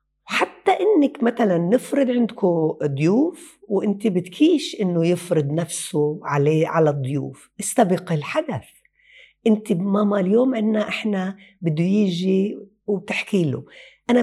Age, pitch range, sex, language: 60-79, 165-235 Hz, female, Arabic